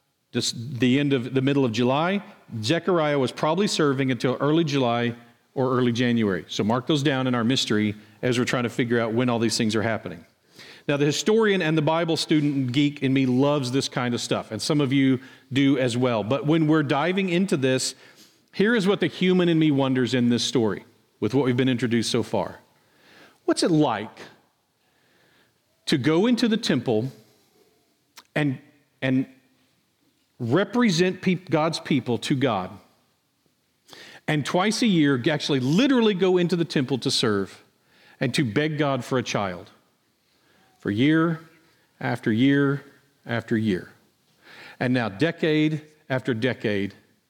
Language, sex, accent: English, male, American